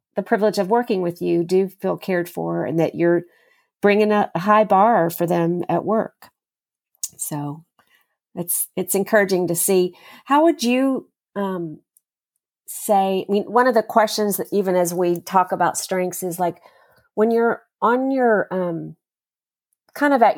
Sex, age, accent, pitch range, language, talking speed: female, 40-59, American, 170-205 Hz, English, 165 wpm